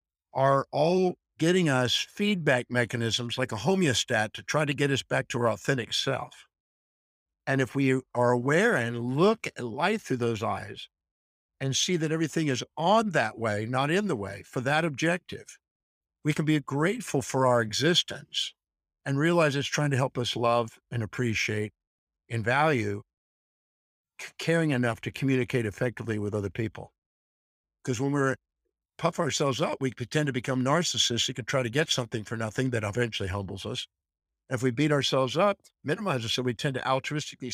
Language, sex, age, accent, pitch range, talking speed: English, male, 60-79, American, 110-145 Hz, 175 wpm